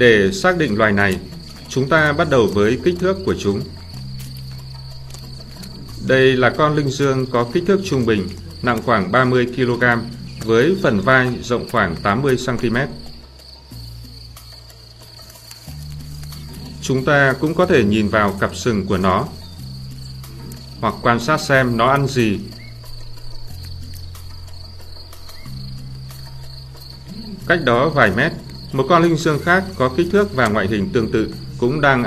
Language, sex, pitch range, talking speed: Vietnamese, male, 75-125 Hz, 135 wpm